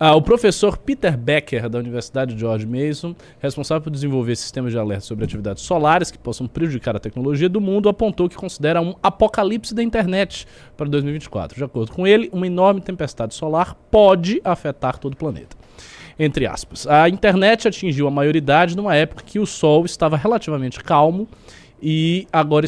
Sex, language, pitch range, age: male, Portuguese, 130-180 Hz, 20-39